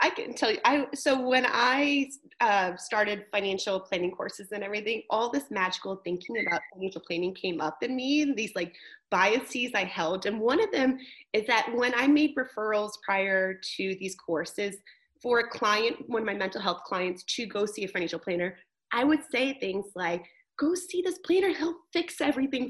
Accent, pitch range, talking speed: American, 190-270 Hz, 190 wpm